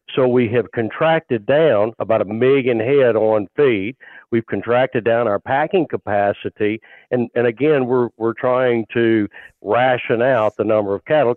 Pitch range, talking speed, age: 110-135 Hz, 160 wpm, 50-69